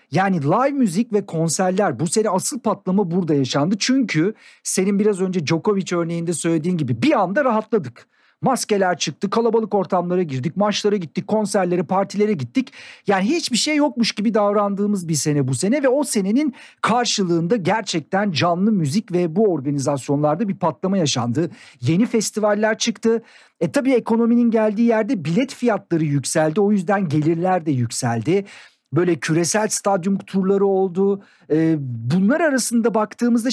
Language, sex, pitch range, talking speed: Turkish, male, 170-230 Hz, 140 wpm